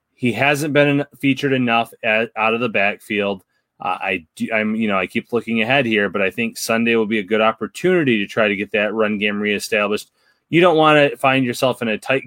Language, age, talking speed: English, 30-49, 230 wpm